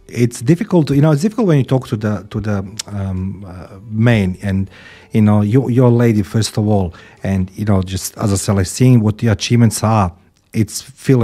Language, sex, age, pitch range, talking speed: English, male, 40-59, 100-130 Hz, 220 wpm